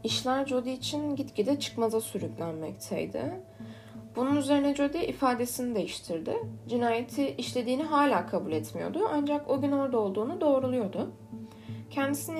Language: Turkish